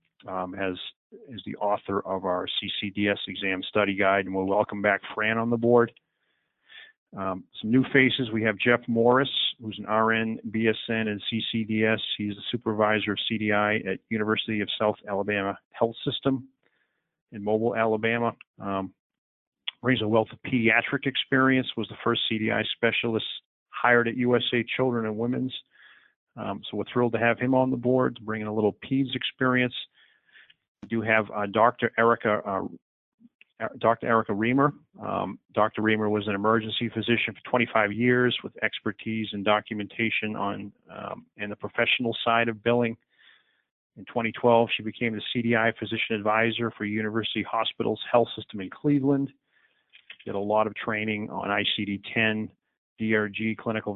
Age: 40-59